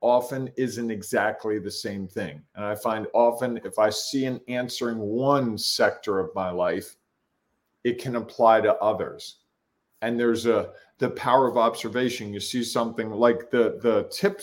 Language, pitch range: English, 110-135 Hz